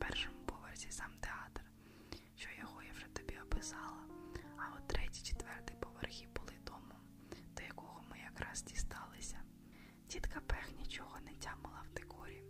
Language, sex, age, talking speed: Ukrainian, female, 20-39, 135 wpm